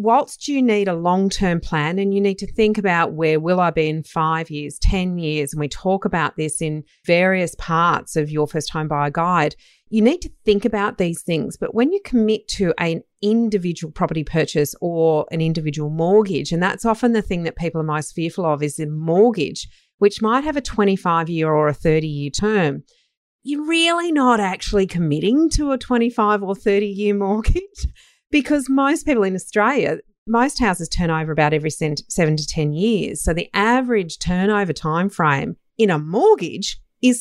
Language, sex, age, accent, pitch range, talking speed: English, female, 40-59, Australian, 160-225 Hz, 185 wpm